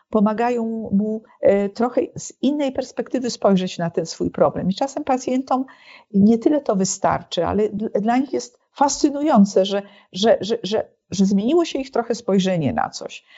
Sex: female